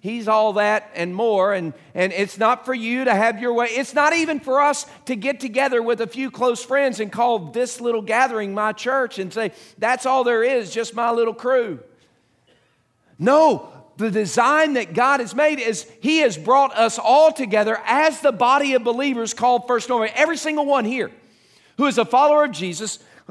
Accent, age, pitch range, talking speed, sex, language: American, 50-69, 210-275 Hz, 200 wpm, male, English